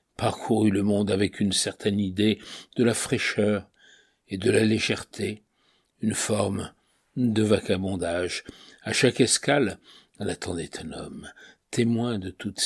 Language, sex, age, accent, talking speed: French, male, 60-79, French, 135 wpm